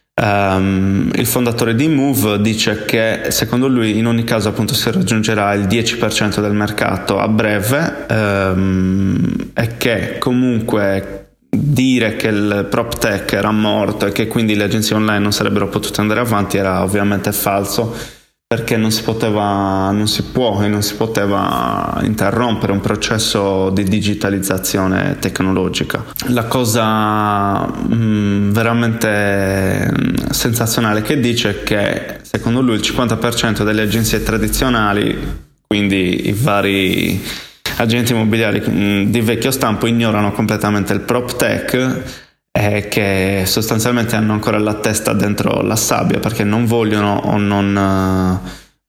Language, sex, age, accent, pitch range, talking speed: Italian, male, 20-39, native, 100-115 Hz, 130 wpm